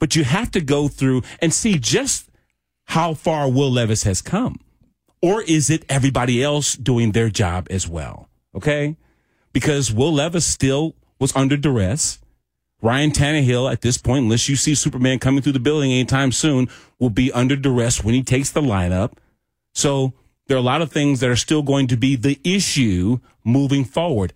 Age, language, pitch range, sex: 40-59, English, 115-150 Hz, male